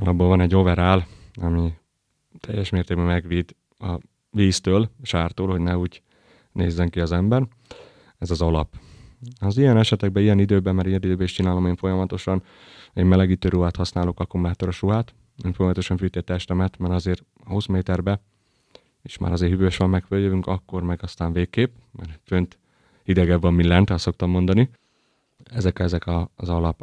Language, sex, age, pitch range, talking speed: Hungarian, male, 30-49, 85-95 Hz, 160 wpm